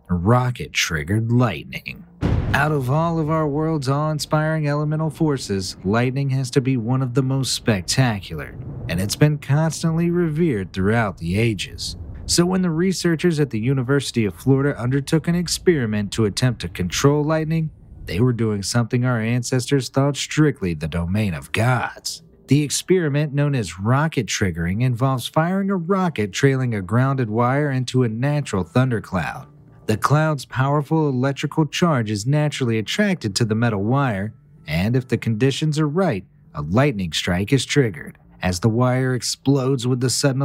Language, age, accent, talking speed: English, 40-59, American, 155 wpm